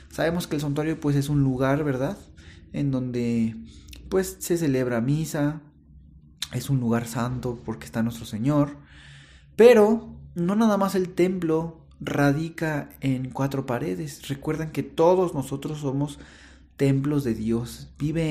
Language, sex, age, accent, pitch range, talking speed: Spanish, male, 30-49, Mexican, 115-155 Hz, 140 wpm